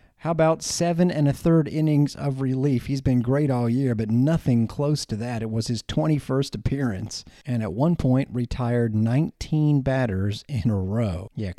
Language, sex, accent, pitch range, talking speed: English, male, American, 105-130 Hz, 180 wpm